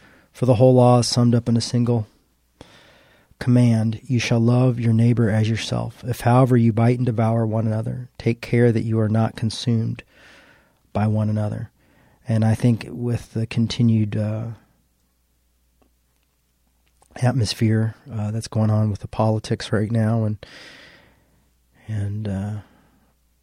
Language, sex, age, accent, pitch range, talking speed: English, male, 40-59, American, 95-115 Hz, 140 wpm